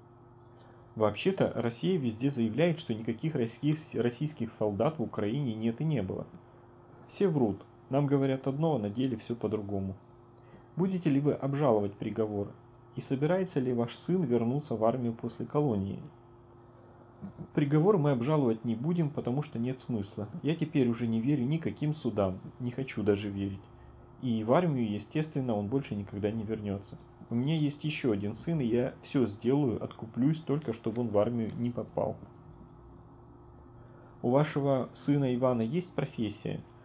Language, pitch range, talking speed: Russian, 110-135 Hz, 150 wpm